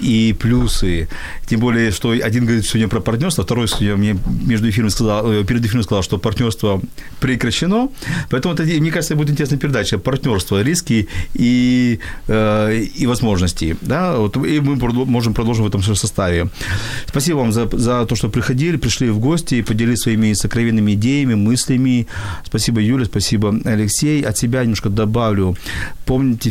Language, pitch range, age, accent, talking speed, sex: Ukrainian, 100-125 Hz, 40-59, native, 145 wpm, male